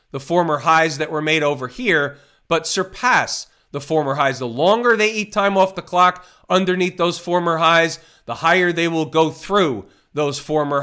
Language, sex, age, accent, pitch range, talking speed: English, male, 40-59, American, 145-185 Hz, 185 wpm